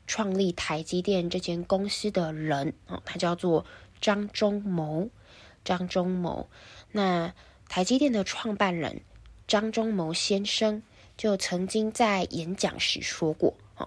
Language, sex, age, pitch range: Chinese, female, 10-29, 155-200 Hz